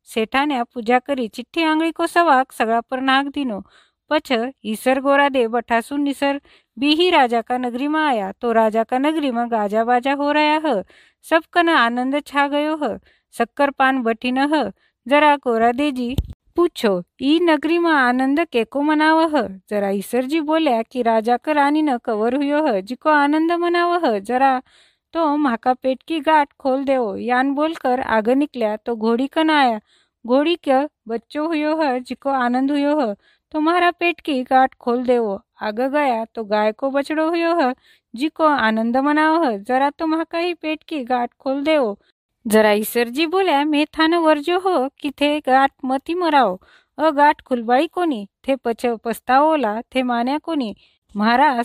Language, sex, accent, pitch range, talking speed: Hindi, female, native, 240-310 Hz, 150 wpm